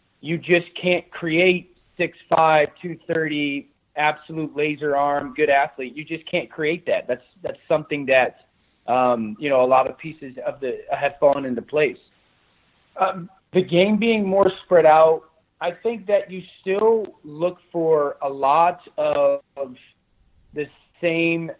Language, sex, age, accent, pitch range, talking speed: English, male, 30-49, American, 145-180 Hz, 150 wpm